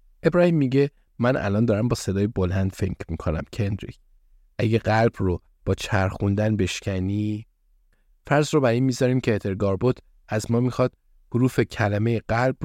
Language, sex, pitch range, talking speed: Persian, male, 100-125 Hz, 140 wpm